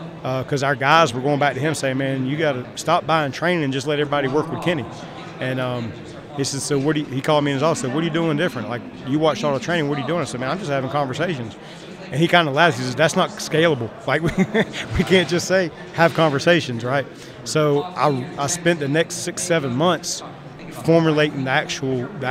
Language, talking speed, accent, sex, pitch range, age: English, 250 wpm, American, male, 135-160 Hz, 40-59